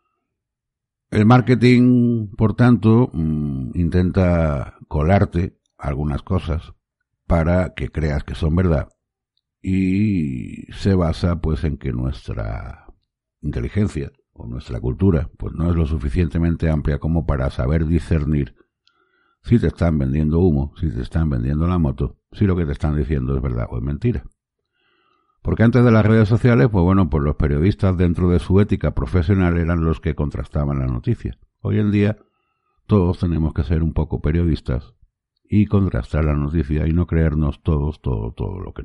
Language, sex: Spanish, male